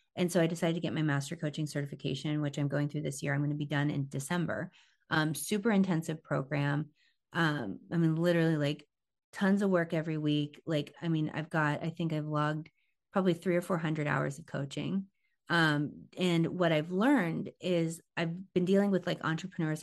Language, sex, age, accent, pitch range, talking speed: English, female, 30-49, American, 150-180 Hz, 195 wpm